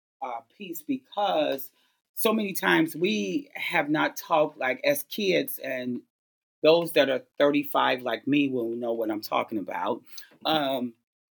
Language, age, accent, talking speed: English, 40-59, American, 145 wpm